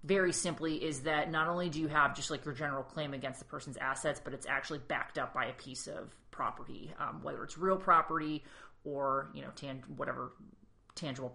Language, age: English, 30-49